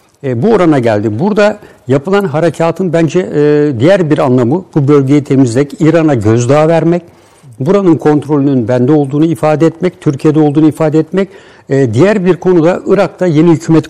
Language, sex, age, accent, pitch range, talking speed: Turkish, male, 60-79, native, 135-165 Hz, 140 wpm